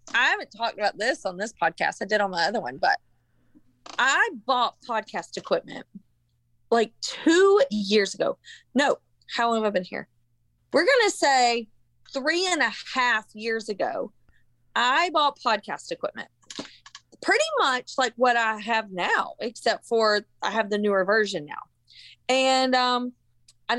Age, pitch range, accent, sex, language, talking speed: 20-39, 190-250 Hz, American, female, English, 155 wpm